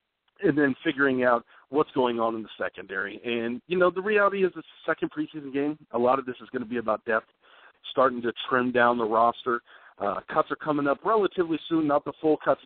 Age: 40-59